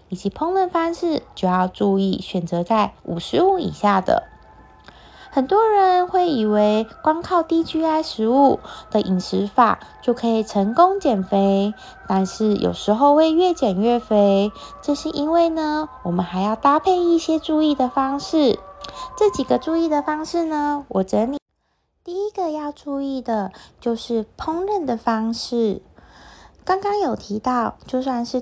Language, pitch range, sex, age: Chinese, 220-310 Hz, female, 20-39